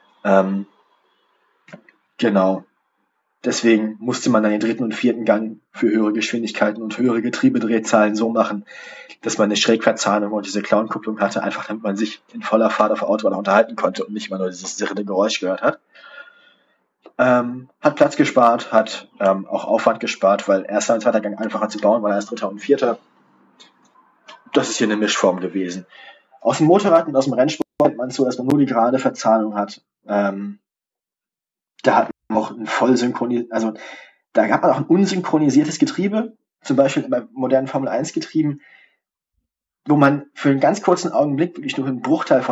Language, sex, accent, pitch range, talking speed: German, male, German, 105-140 Hz, 175 wpm